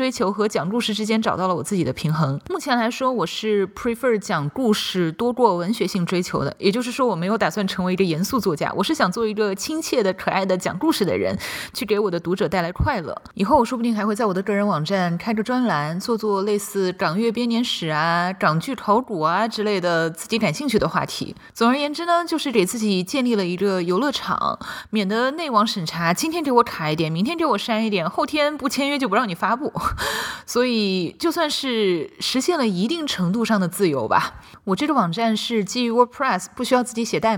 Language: Chinese